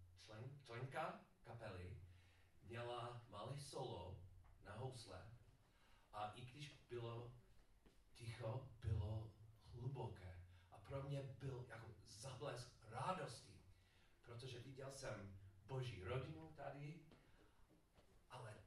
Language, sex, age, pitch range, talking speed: Czech, male, 40-59, 100-130 Hz, 90 wpm